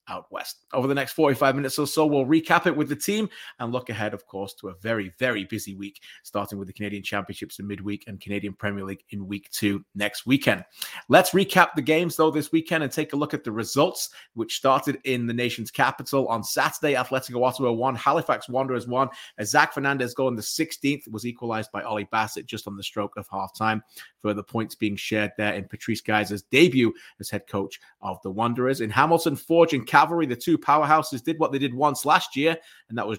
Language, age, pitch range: English, 30-49, 105-140 Hz